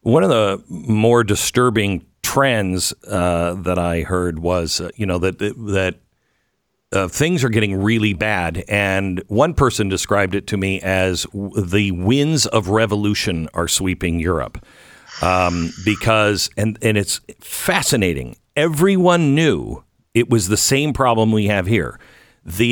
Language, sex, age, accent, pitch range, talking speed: English, male, 50-69, American, 100-130 Hz, 145 wpm